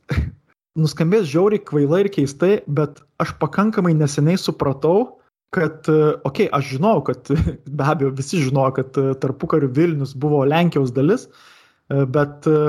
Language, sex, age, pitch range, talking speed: English, male, 20-39, 140-170 Hz, 125 wpm